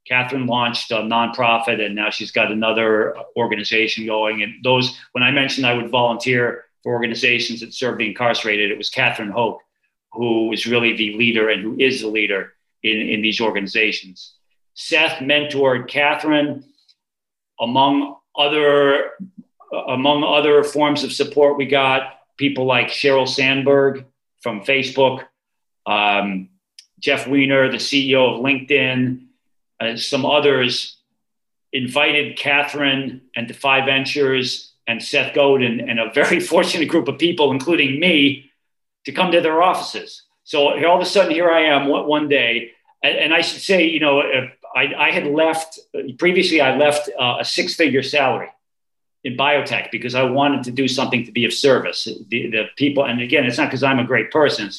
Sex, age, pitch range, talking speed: male, 40-59, 115-145 Hz, 160 wpm